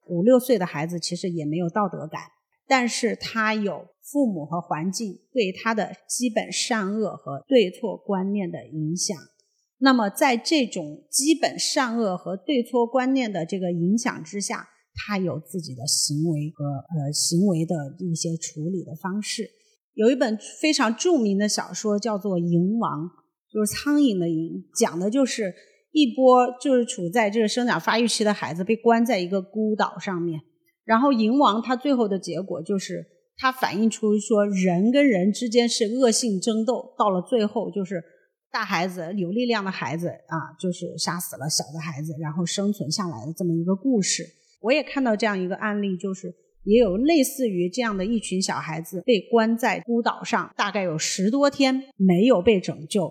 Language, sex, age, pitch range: Chinese, female, 30-49, 175-235 Hz